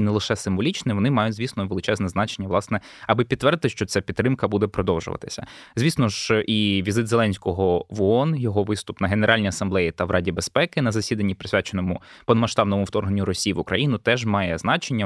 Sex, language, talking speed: male, Ukrainian, 175 wpm